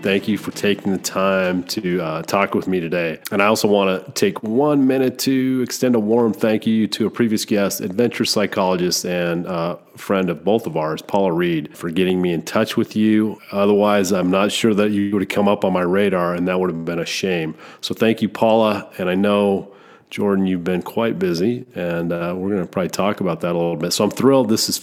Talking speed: 235 wpm